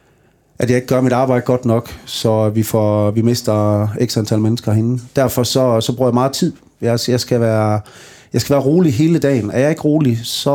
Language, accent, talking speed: Danish, native, 215 wpm